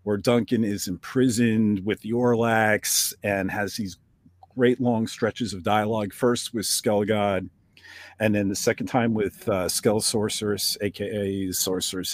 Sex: male